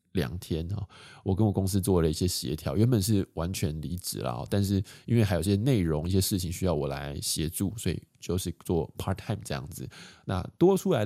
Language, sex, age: Chinese, male, 20-39